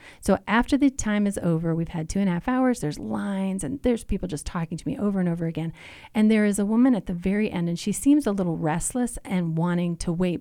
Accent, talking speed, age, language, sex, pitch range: American, 260 wpm, 30-49, English, female, 165-215 Hz